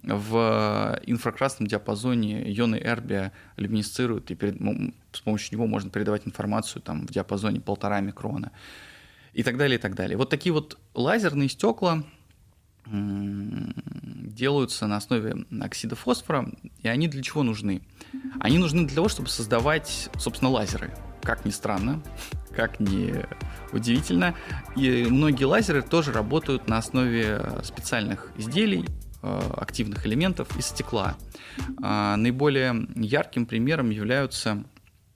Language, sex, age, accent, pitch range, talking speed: Russian, male, 20-39, native, 105-130 Hz, 125 wpm